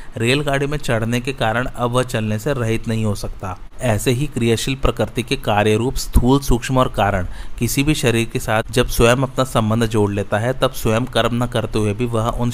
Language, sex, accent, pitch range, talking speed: Hindi, male, native, 105-125 Hz, 215 wpm